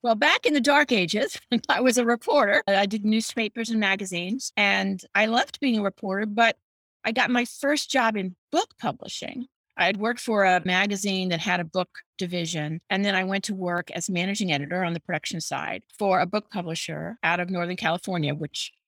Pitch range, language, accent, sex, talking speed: 180-235 Hz, English, American, female, 200 wpm